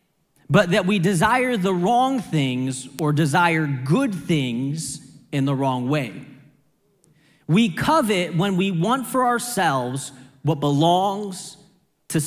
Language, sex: English, male